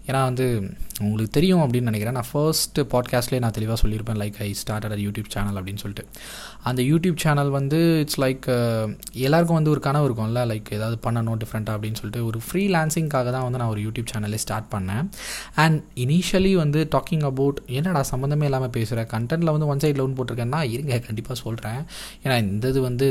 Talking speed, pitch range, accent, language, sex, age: 180 wpm, 110-145 Hz, native, Tamil, male, 20-39